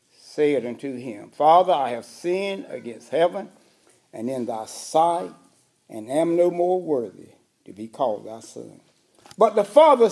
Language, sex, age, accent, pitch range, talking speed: English, male, 60-79, American, 125-185 Hz, 155 wpm